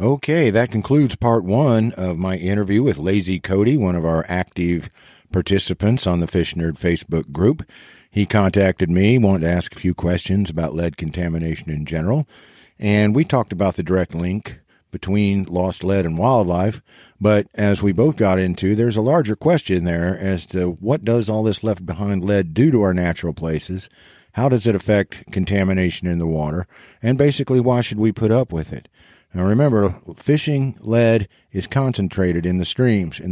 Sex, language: male, English